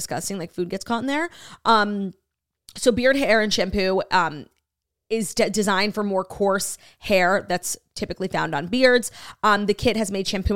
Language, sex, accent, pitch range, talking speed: English, female, American, 190-255 Hz, 175 wpm